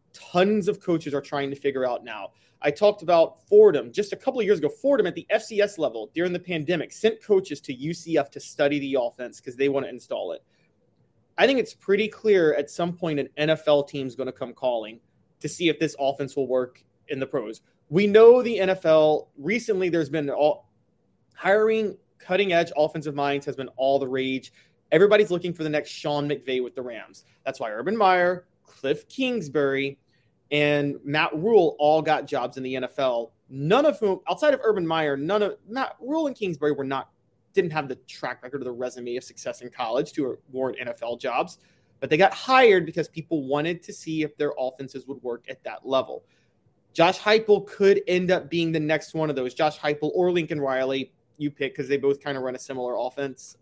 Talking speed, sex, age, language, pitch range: 205 wpm, male, 20-39, English, 135-180 Hz